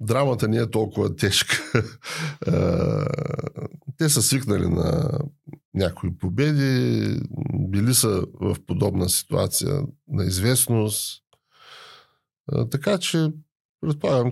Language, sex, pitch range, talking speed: Bulgarian, male, 95-145 Hz, 90 wpm